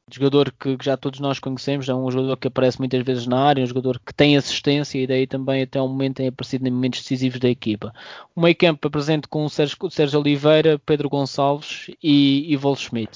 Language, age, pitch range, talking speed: Portuguese, 20-39, 135-145 Hz, 220 wpm